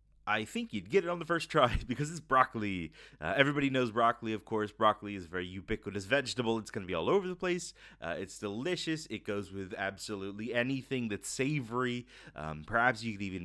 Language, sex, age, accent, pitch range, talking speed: English, male, 30-49, American, 100-140 Hz, 210 wpm